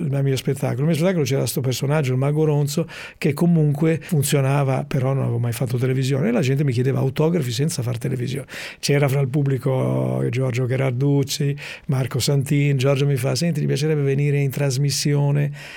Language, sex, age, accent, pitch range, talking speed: Italian, male, 50-69, native, 130-150 Hz, 180 wpm